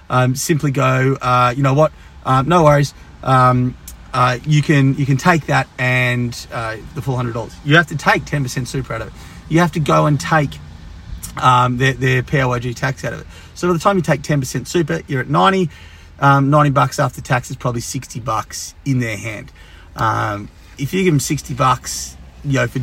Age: 30-49